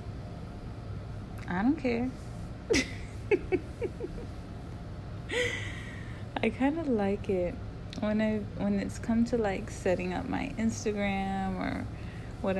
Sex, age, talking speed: female, 30-49, 100 wpm